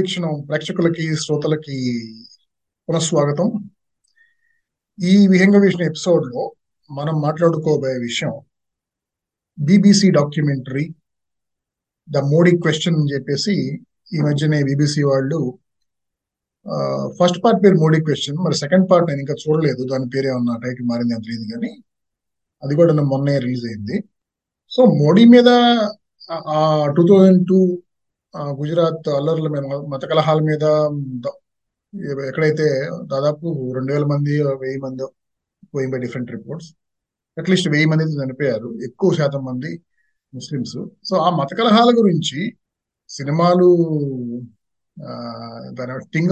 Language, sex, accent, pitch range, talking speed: Telugu, male, native, 135-175 Hz, 100 wpm